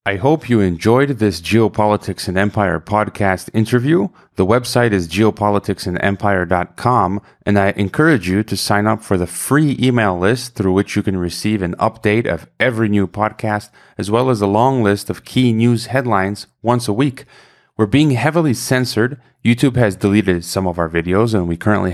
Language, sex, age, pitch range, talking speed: English, male, 30-49, 95-120 Hz, 175 wpm